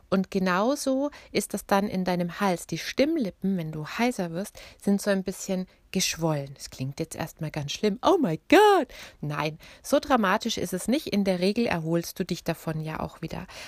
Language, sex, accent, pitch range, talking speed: German, female, German, 165-220 Hz, 195 wpm